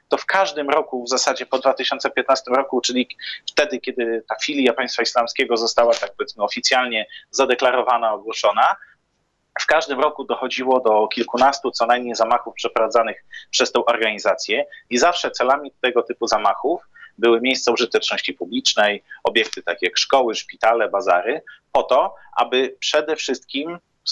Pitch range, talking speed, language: 120-135 Hz, 140 wpm, Polish